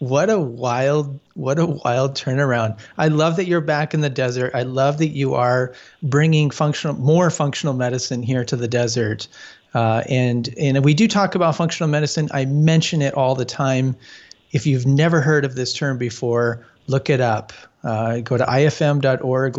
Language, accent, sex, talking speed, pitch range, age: English, American, male, 180 wpm, 120-150 Hz, 40-59